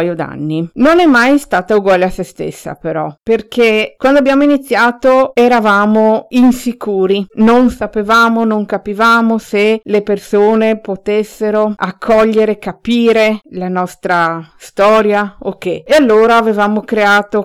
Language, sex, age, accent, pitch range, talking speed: Italian, female, 50-69, native, 185-220 Hz, 115 wpm